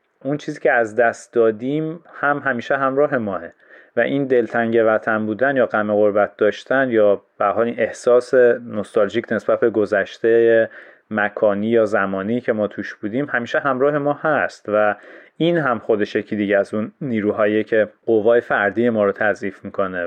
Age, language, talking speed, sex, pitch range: 30-49, Persian, 160 wpm, male, 100-120 Hz